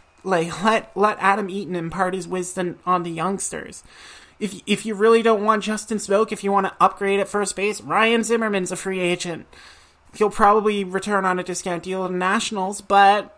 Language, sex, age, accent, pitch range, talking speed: English, male, 30-49, American, 185-215 Hz, 195 wpm